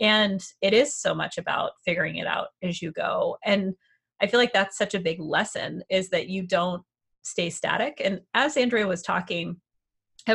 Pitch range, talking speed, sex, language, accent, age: 185-245 Hz, 190 wpm, female, English, American, 30-49